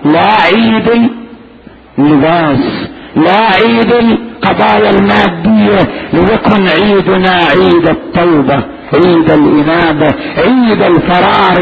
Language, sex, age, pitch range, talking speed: Arabic, male, 50-69, 155-200 Hz, 75 wpm